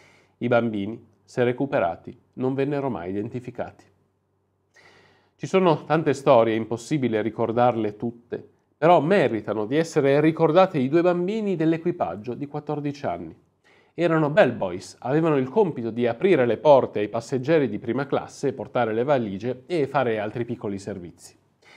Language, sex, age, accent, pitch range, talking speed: Italian, male, 40-59, native, 115-150 Hz, 135 wpm